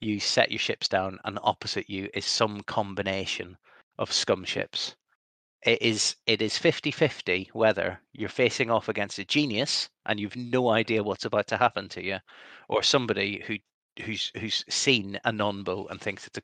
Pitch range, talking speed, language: 95-110 Hz, 185 wpm, English